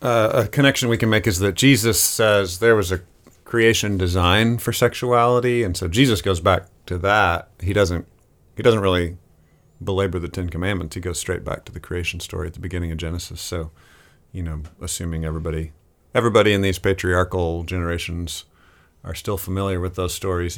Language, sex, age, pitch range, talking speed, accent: English, male, 40-59, 85-100 Hz, 180 wpm, American